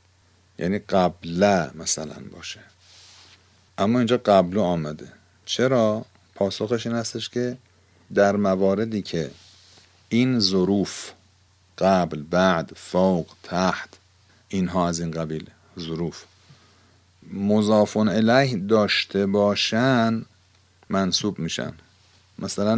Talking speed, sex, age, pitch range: 90 wpm, male, 50-69, 95-110 Hz